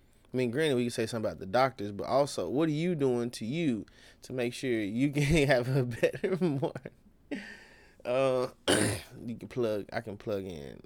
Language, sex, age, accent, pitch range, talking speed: English, male, 20-39, American, 110-135 Hz, 195 wpm